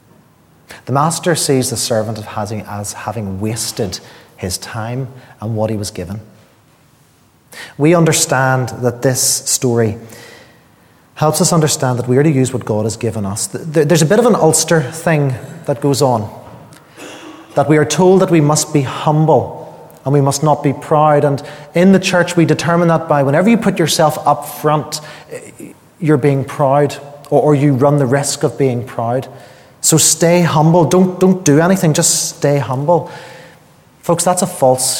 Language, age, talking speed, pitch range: English, 30-49, 170 wpm, 130-160 Hz